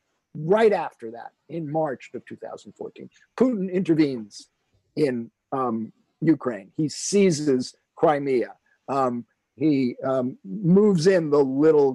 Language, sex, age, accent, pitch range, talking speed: English, male, 50-69, American, 130-175 Hz, 110 wpm